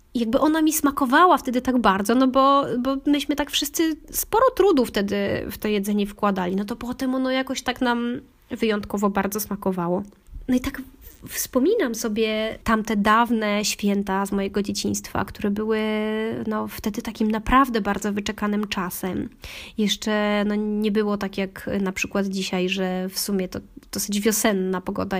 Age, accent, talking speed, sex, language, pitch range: 20-39, native, 160 wpm, female, Polish, 200-235 Hz